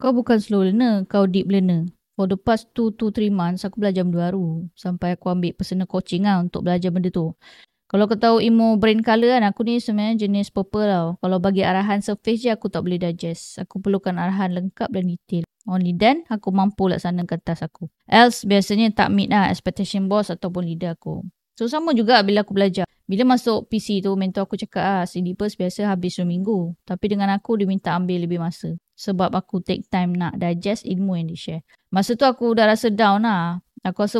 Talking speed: 210 wpm